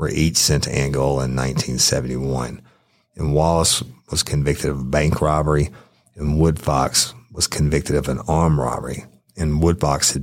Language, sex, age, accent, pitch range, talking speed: English, male, 50-69, American, 65-75 Hz, 155 wpm